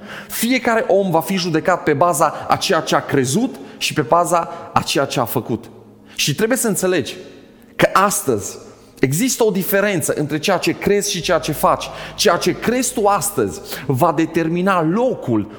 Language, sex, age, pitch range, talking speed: Romanian, male, 30-49, 140-185 Hz, 175 wpm